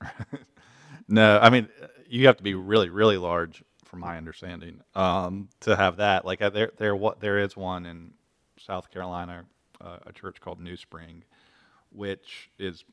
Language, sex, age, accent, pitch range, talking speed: English, male, 30-49, American, 85-100 Hz, 160 wpm